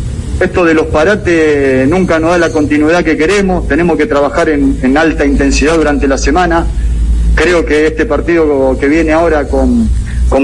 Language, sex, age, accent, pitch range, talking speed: Spanish, male, 40-59, Argentinian, 140-180 Hz, 170 wpm